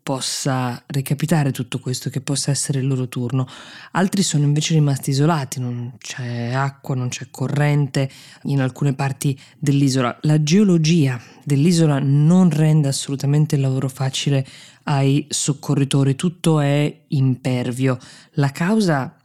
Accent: native